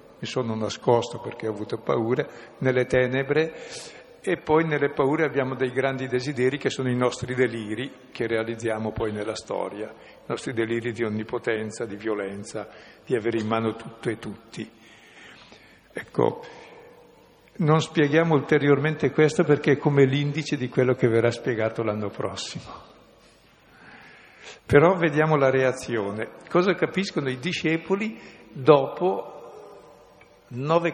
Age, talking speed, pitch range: 60-79, 130 wpm, 115-160 Hz